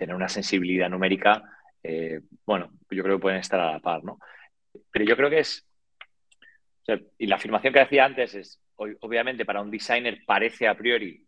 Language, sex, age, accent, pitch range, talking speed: Spanish, male, 30-49, Spanish, 90-110 Hz, 190 wpm